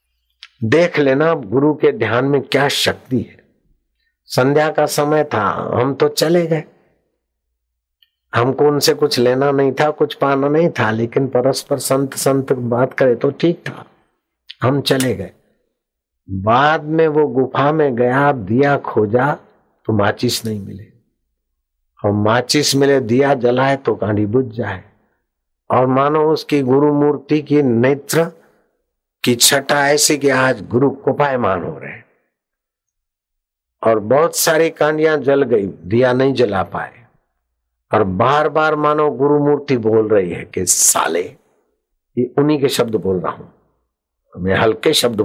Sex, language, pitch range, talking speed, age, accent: male, Hindi, 100-145 Hz, 140 wpm, 60-79, native